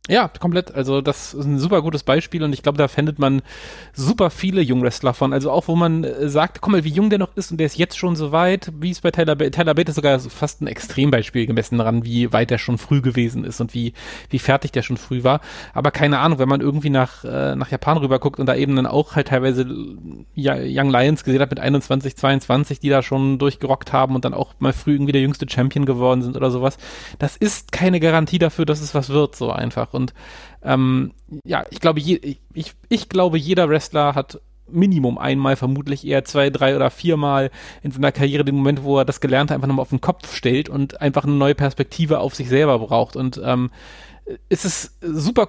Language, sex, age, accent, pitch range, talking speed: German, male, 30-49, German, 130-160 Hz, 220 wpm